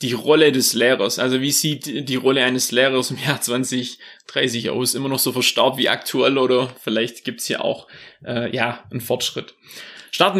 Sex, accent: male, German